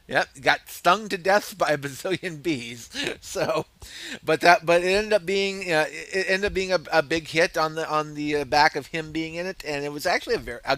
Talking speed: 245 wpm